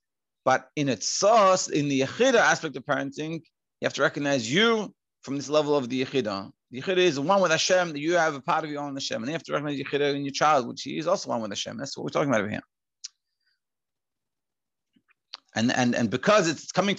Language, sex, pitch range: English, male, 145-195 Hz